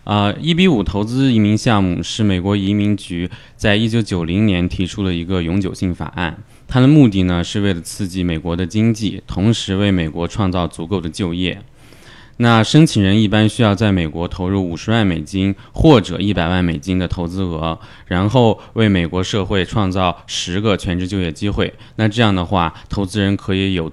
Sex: male